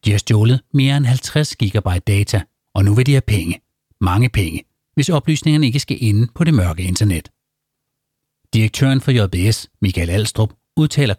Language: Danish